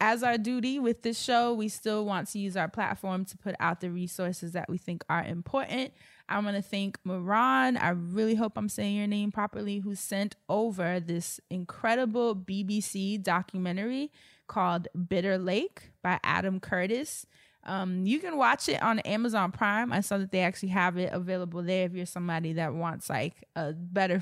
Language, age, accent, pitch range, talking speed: English, 20-39, American, 180-220 Hz, 185 wpm